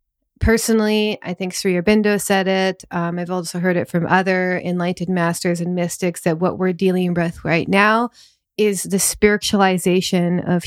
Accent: American